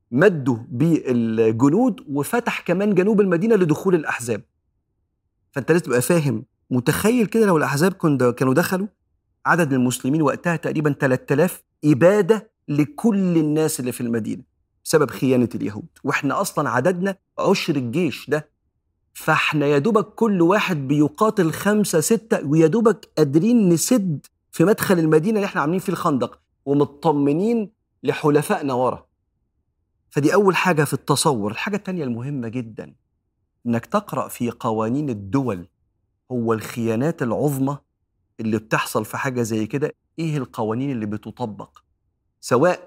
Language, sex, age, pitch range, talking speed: Arabic, male, 40-59, 120-170 Hz, 120 wpm